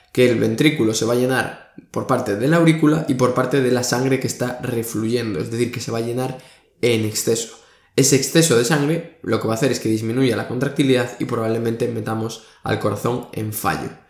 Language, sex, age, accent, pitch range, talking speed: Spanish, male, 20-39, Spanish, 115-150 Hz, 215 wpm